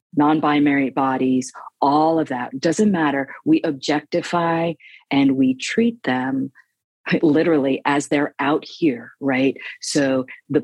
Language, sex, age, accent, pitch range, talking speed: English, female, 40-59, American, 130-160 Hz, 120 wpm